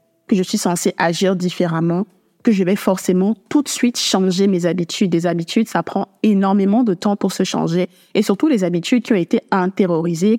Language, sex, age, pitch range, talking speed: French, female, 20-39, 175-205 Hz, 195 wpm